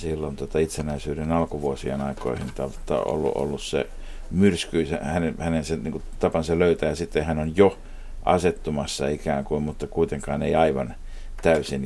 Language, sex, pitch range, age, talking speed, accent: Finnish, male, 80-95 Hz, 60-79, 150 wpm, native